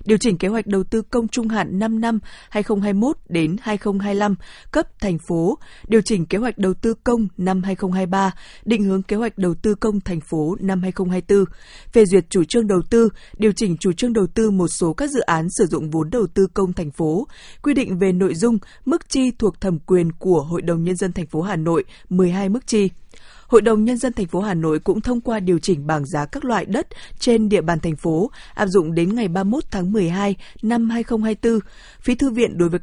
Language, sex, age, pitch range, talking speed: Vietnamese, female, 20-39, 175-225 Hz, 220 wpm